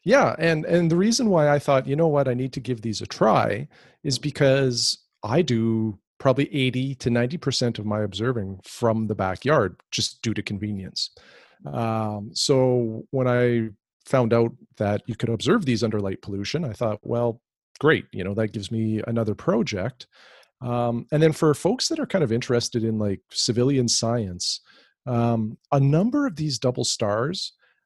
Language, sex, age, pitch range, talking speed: English, male, 40-59, 110-135 Hz, 175 wpm